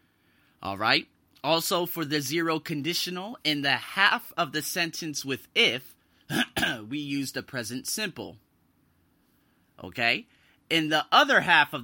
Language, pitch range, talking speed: English, 135-180 Hz, 130 wpm